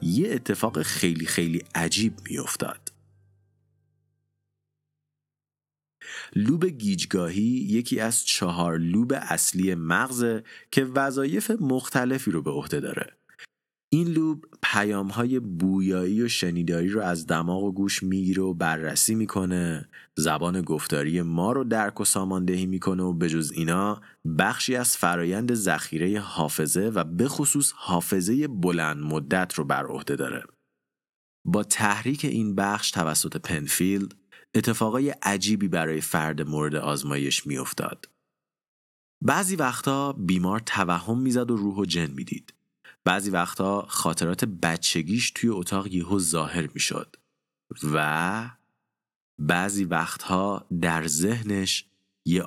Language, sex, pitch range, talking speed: Persian, male, 85-115 Hz, 115 wpm